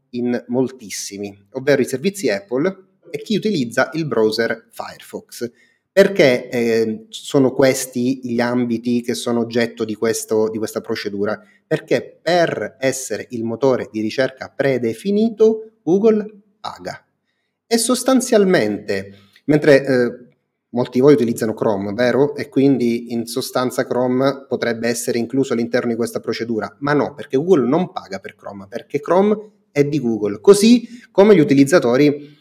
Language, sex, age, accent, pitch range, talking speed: Italian, male, 30-49, native, 115-165 Hz, 140 wpm